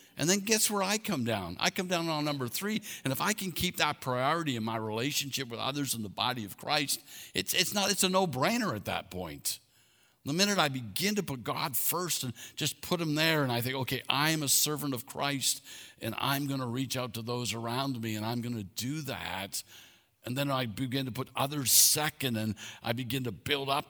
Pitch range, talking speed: 100-135 Hz, 230 wpm